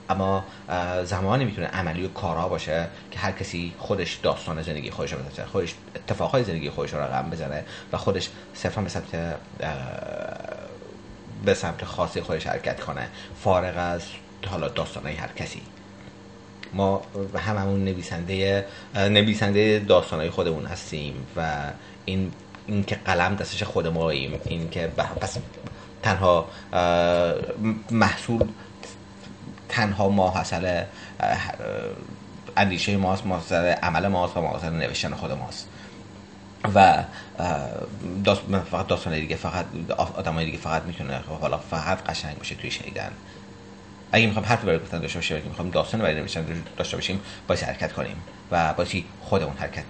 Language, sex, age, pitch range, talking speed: Persian, male, 30-49, 85-100 Hz, 125 wpm